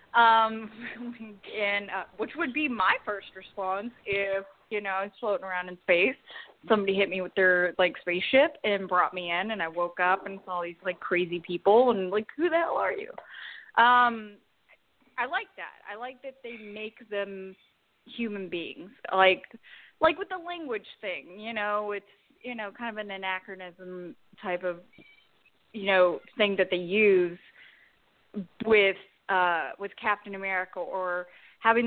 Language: English